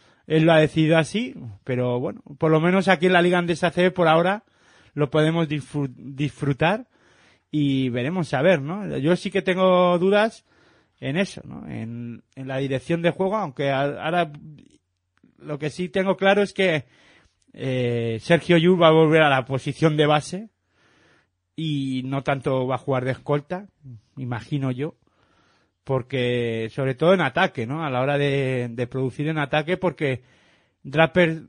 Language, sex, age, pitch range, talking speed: Spanish, male, 30-49, 125-165 Hz, 160 wpm